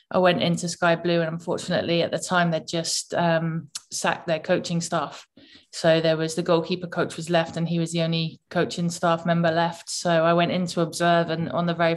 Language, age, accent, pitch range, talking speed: English, 20-39, British, 170-180 Hz, 220 wpm